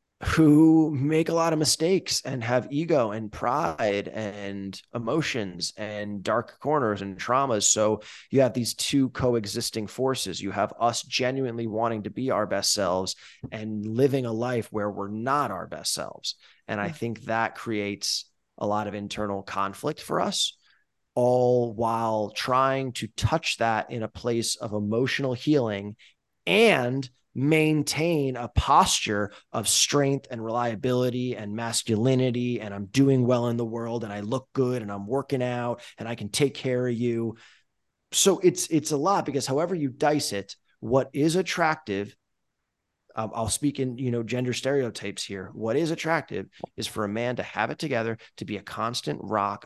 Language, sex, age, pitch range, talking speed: English, male, 20-39, 105-130 Hz, 170 wpm